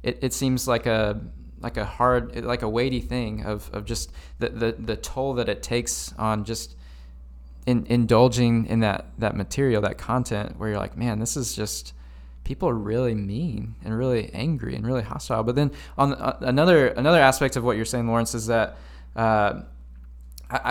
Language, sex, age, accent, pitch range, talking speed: English, male, 20-39, American, 105-130 Hz, 185 wpm